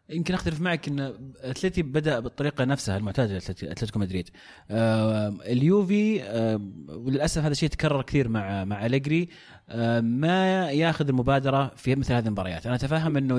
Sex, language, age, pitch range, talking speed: male, Arabic, 30-49, 115-155 Hz, 145 wpm